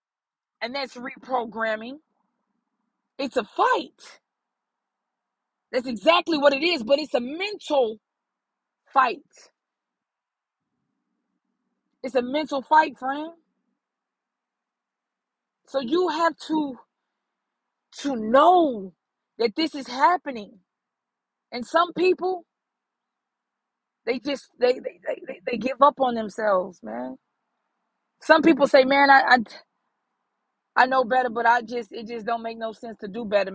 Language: English